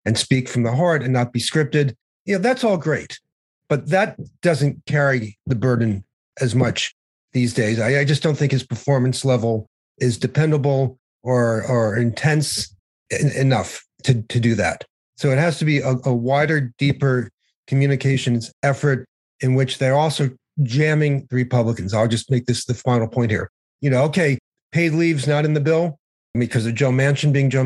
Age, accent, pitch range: 40-59, American, 125-150 Hz